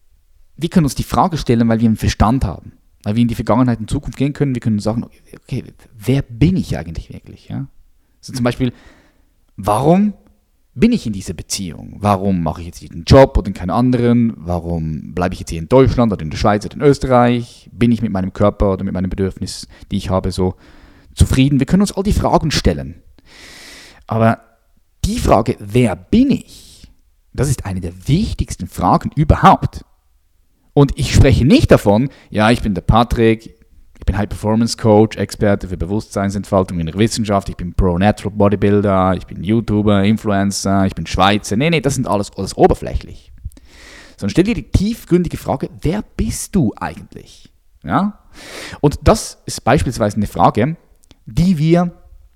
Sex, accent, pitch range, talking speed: male, German, 90-120 Hz, 175 wpm